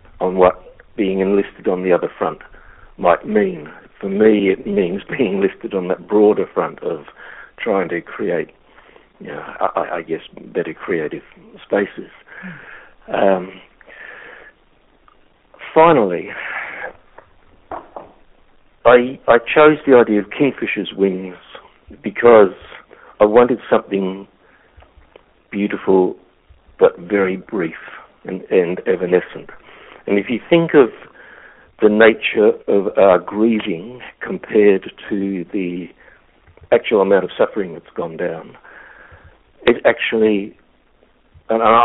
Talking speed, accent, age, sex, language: 105 wpm, British, 60-79, male, English